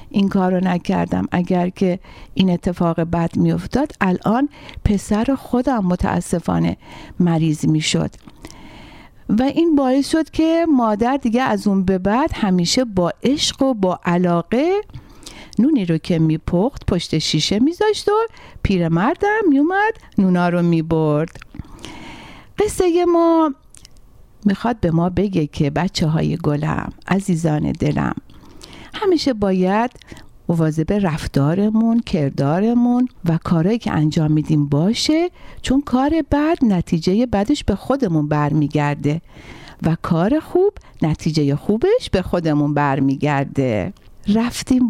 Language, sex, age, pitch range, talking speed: Persian, female, 60-79, 160-255 Hz, 120 wpm